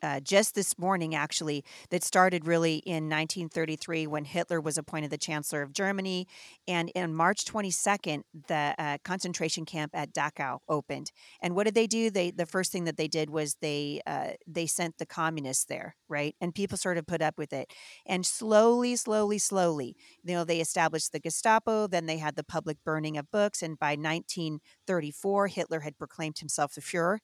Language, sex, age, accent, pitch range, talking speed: English, female, 40-59, American, 155-195 Hz, 185 wpm